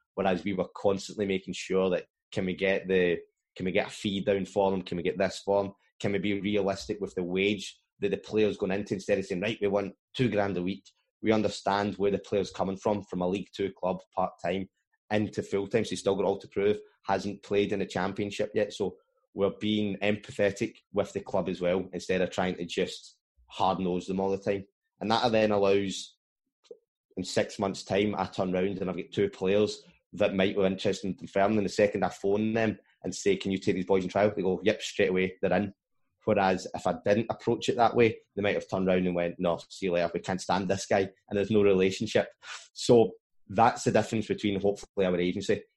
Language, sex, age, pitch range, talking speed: English, male, 20-39, 95-105 Hz, 230 wpm